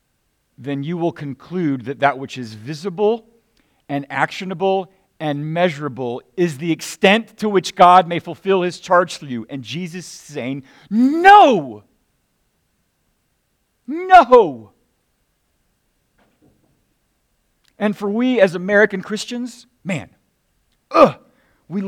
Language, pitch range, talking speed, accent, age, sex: English, 180-250 Hz, 105 wpm, American, 50-69, male